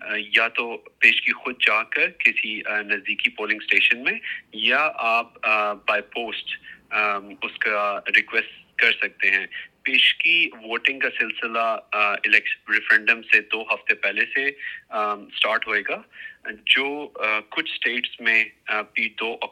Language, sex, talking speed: Urdu, male, 80 wpm